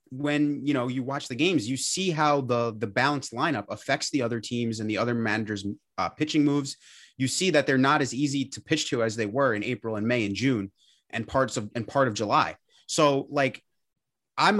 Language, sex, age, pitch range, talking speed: English, male, 30-49, 115-150 Hz, 220 wpm